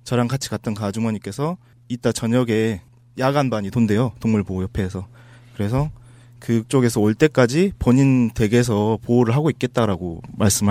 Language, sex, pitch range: Korean, male, 110-135 Hz